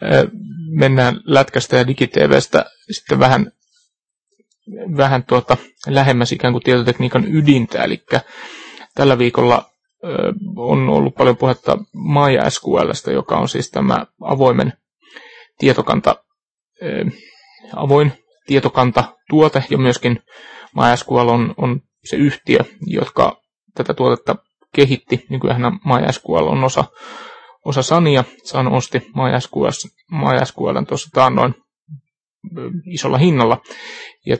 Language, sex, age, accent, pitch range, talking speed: Finnish, male, 30-49, native, 125-210 Hz, 100 wpm